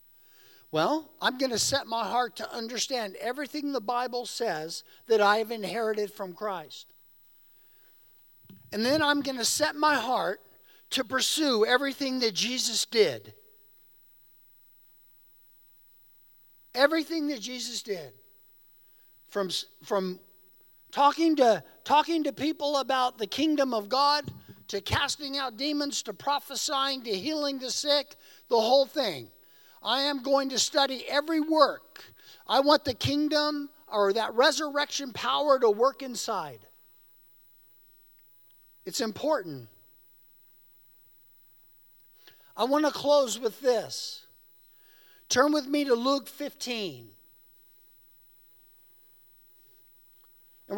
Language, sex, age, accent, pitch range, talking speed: English, male, 50-69, American, 220-290 Hz, 110 wpm